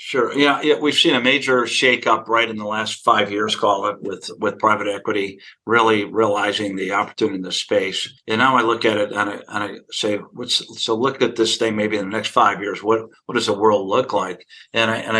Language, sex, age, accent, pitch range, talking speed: English, male, 50-69, American, 110-130 Hz, 240 wpm